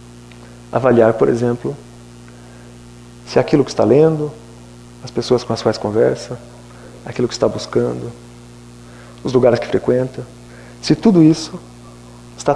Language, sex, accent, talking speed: Portuguese, male, Brazilian, 125 wpm